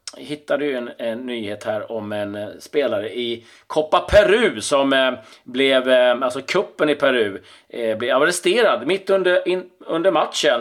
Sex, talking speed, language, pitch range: male, 165 wpm, Swedish, 130-170 Hz